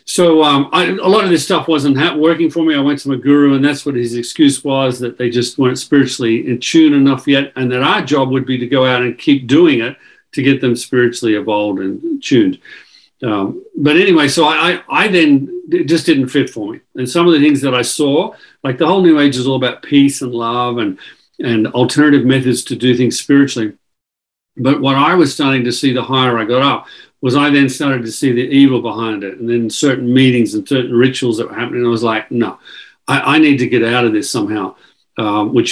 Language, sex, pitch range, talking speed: English, male, 120-145 Hz, 235 wpm